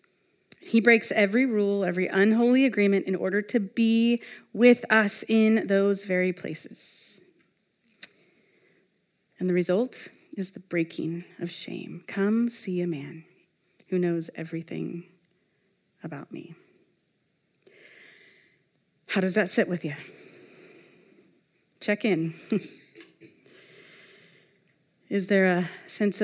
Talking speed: 105 wpm